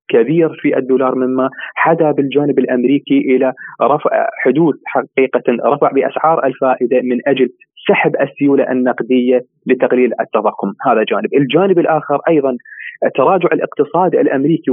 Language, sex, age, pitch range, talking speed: Arabic, male, 30-49, 130-160 Hz, 120 wpm